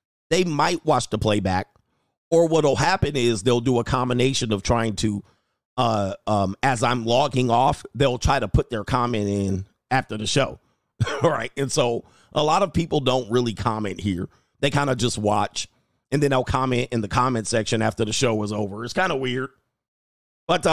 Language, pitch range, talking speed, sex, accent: English, 100-140 Hz, 195 wpm, male, American